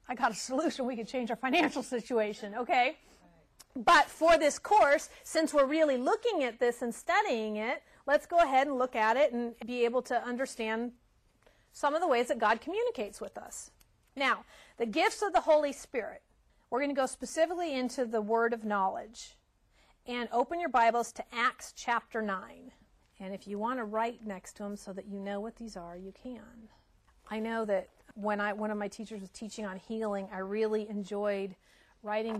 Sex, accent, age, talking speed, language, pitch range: female, American, 40-59, 195 wpm, English, 205-255 Hz